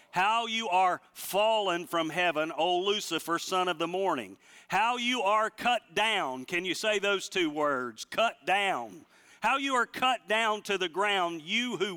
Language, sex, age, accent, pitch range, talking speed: English, male, 40-59, American, 160-205 Hz, 175 wpm